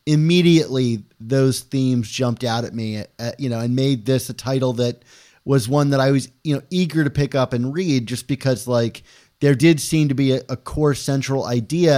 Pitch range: 120-145 Hz